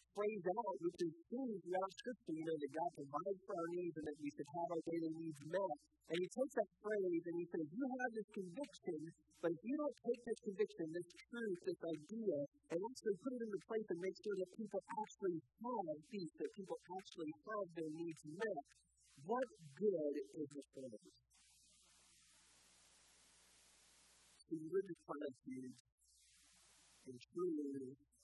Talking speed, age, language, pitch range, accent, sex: 170 wpm, 50-69, English, 135-200 Hz, American, female